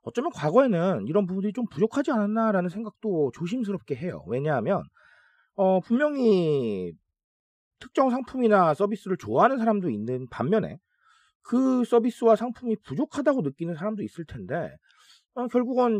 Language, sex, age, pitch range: Korean, male, 30-49, 140-225 Hz